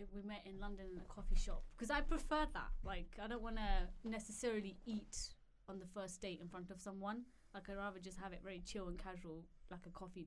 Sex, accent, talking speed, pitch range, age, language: female, British, 235 wpm, 195-255 Hz, 20-39, English